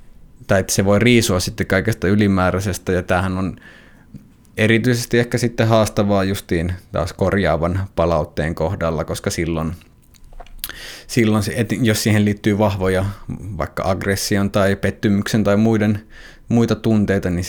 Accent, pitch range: native, 85-110 Hz